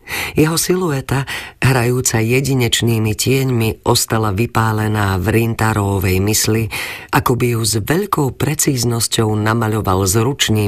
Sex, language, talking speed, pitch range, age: female, Slovak, 95 wpm, 100-135 Hz, 40-59